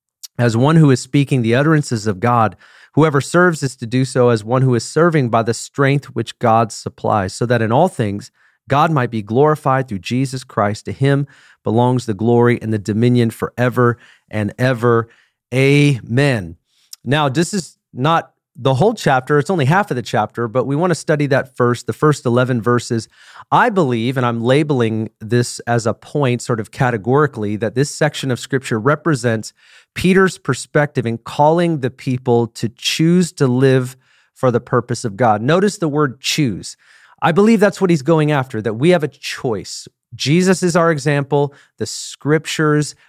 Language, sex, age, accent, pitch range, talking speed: English, male, 40-59, American, 120-150 Hz, 180 wpm